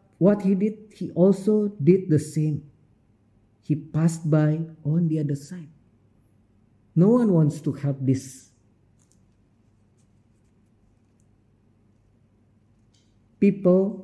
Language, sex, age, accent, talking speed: English, male, 50-69, Indonesian, 95 wpm